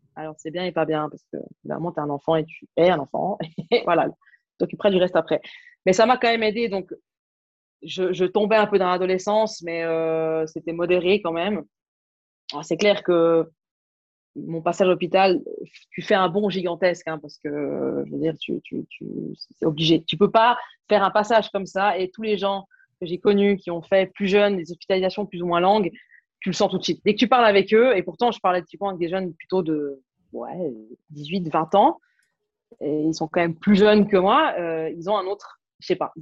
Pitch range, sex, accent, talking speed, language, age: 165-210 Hz, female, French, 230 wpm, French, 20-39